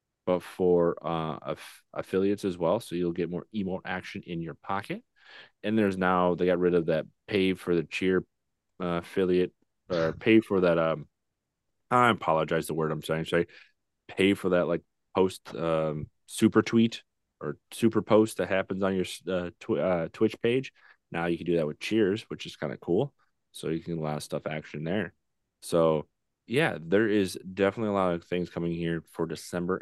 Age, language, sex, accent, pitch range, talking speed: 30-49, English, male, American, 80-95 Hz, 195 wpm